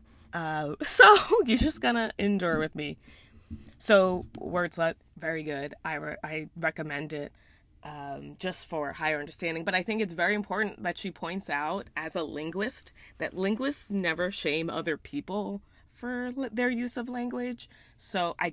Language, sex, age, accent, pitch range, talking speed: English, female, 20-39, American, 150-220 Hz, 155 wpm